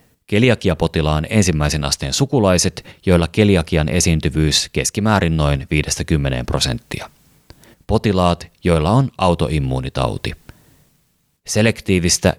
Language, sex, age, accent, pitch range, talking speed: Finnish, male, 30-49, native, 80-105 Hz, 75 wpm